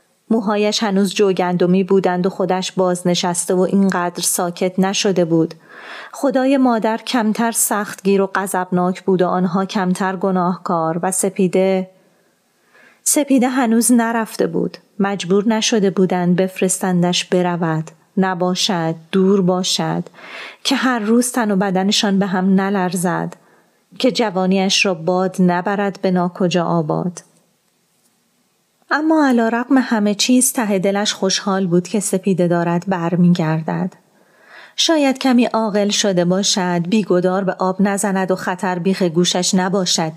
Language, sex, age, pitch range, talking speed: Persian, female, 30-49, 180-215 Hz, 120 wpm